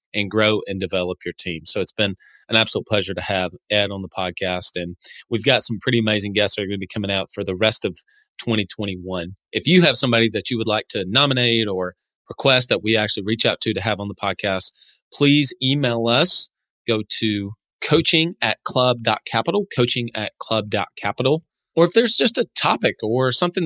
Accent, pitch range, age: American, 100-125 Hz, 30-49